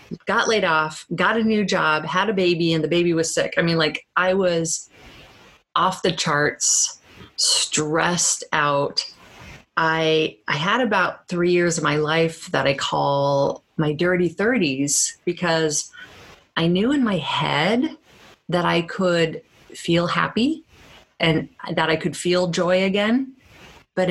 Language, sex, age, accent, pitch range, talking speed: English, female, 30-49, American, 145-180 Hz, 145 wpm